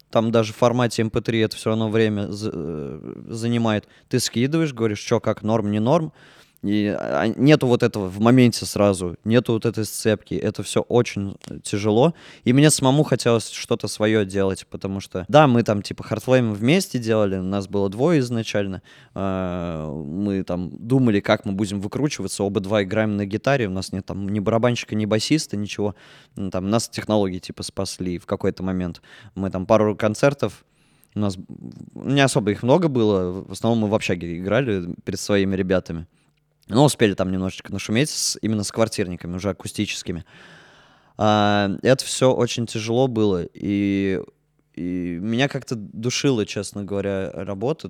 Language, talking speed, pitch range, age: Russian, 160 wpm, 100-120 Hz, 20-39